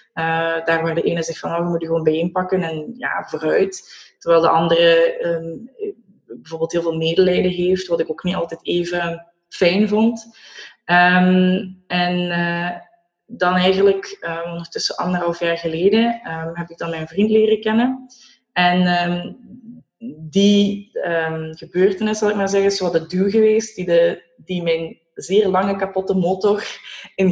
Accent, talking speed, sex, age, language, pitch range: Dutch, 160 wpm, female, 20-39, Dutch, 170-210 Hz